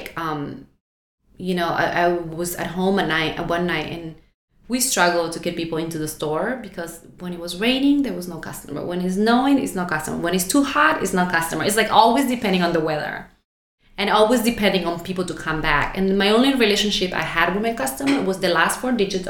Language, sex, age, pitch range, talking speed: English, female, 20-39, 170-205 Hz, 220 wpm